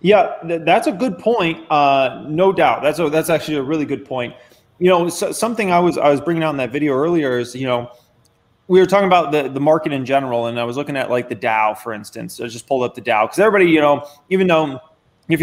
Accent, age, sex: American, 20-39, male